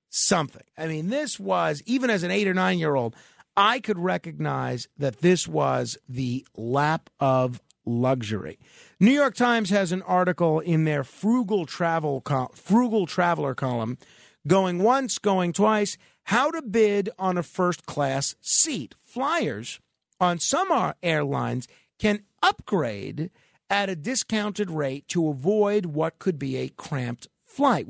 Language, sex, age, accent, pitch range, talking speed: English, male, 50-69, American, 150-210 Hz, 140 wpm